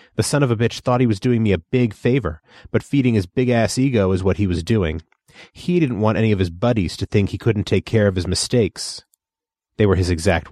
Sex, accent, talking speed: male, American, 245 wpm